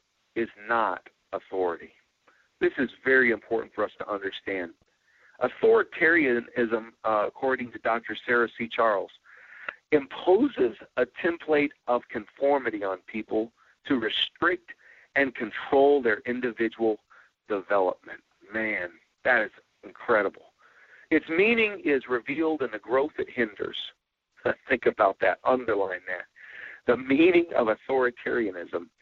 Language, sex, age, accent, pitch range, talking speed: English, male, 50-69, American, 110-165 Hz, 115 wpm